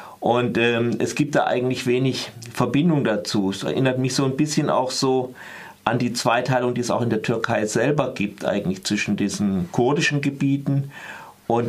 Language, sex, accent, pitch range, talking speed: German, male, German, 115-145 Hz, 175 wpm